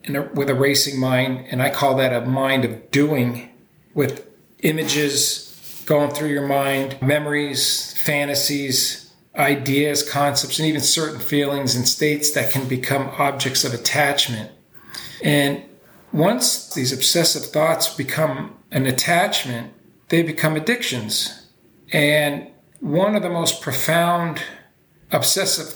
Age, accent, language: 40-59, American, English